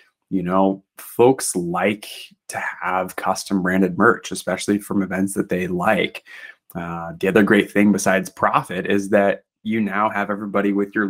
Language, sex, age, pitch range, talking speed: English, male, 20-39, 100-120 Hz, 160 wpm